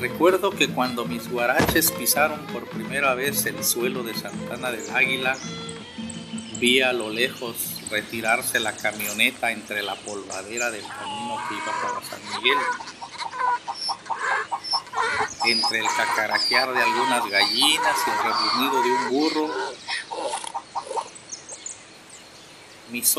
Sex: male